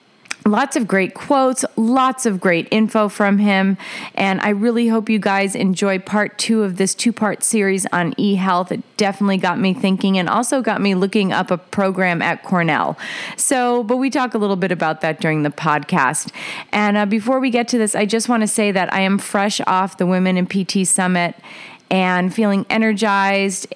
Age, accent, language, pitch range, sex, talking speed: 30-49, American, English, 180-220 Hz, female, 200 wpm